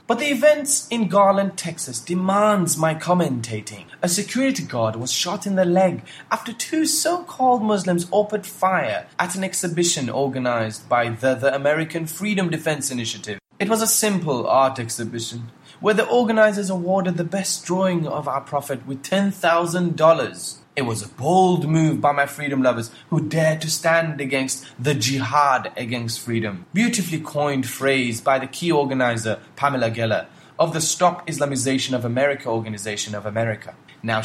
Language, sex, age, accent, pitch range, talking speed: English, male, 20-39, South African, 125-185 Hz, 155 wpm